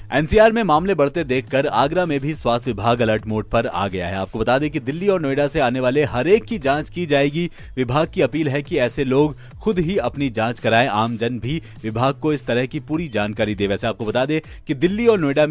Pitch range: 110-145 Hz